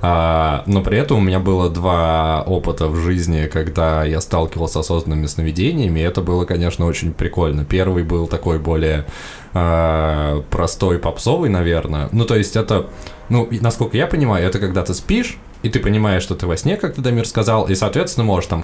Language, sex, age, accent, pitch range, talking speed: Russian, male, 20-39, native, 80-100 Hz, 185 wpm